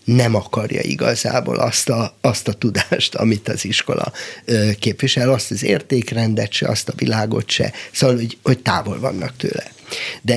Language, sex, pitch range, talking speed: Hungarian, male, 110-130 Hz, 150 wpm